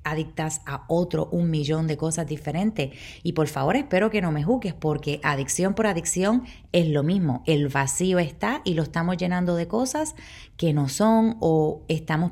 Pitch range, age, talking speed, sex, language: 160-210 Hz, 30-49, 180 wpm, female, Spanish